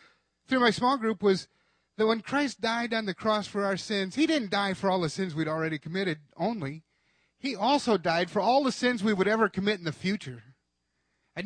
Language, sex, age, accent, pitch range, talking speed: English, male, 30-49, American, 155-235 Hz, 215 wpm